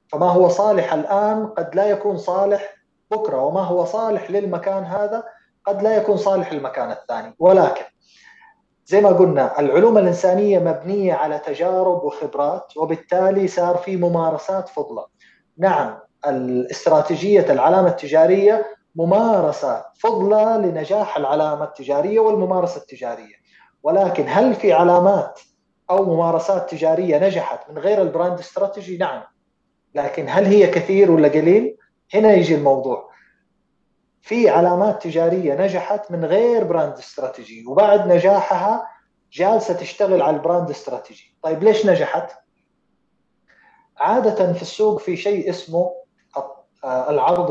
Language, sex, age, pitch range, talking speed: English, male, 30-49, 165-210 Hz, 115 wpm